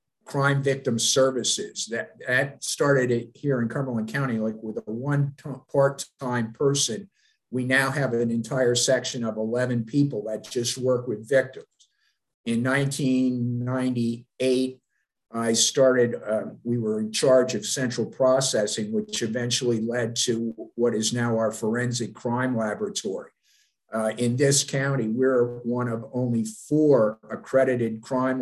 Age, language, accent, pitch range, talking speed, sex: 50-69, English, American, 115-130 Hz, 135 wpm, male